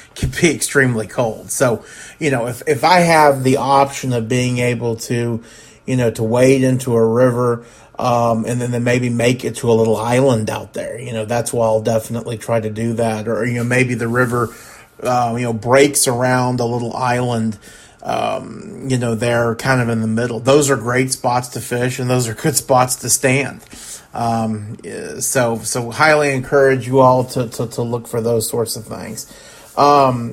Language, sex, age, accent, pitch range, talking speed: English, male, 30-49, American, 115-140 Hz, 200 wpm